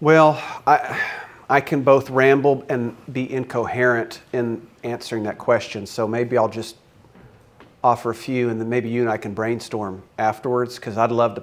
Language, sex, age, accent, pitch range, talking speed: English, male, 40-59, American, 115-130 Hz, 175 wpm